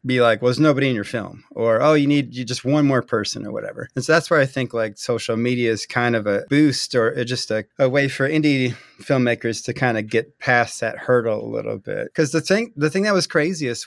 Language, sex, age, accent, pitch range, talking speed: English, male, 30-49, American, 125-155 Hz, 255 wpm